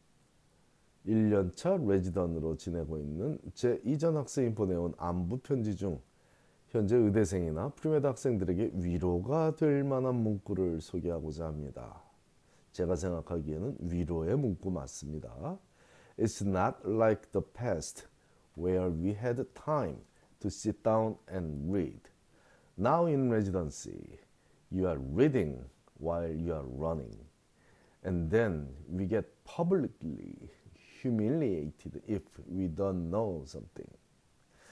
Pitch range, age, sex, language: 85-125 Hz, 40-59, male, Korean